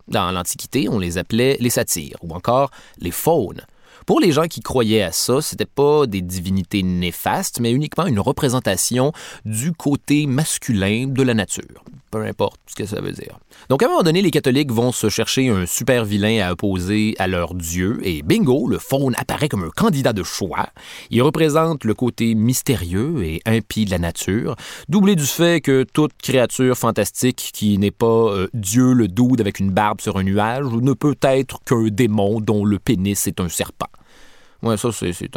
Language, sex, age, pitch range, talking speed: French, male, 30-49, 100-140 Hz, 195 wpm